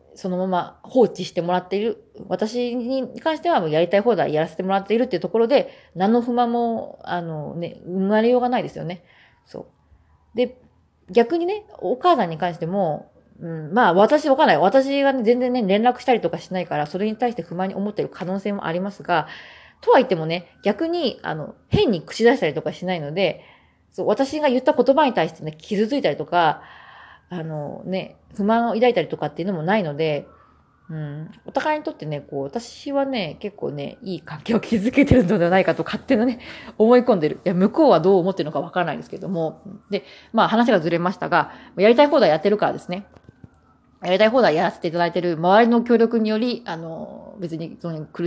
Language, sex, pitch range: Japanese, female, 175-245 Hz